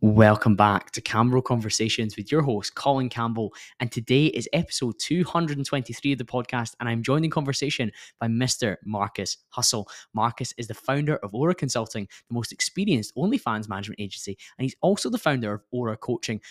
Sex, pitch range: male, 105-135 Hz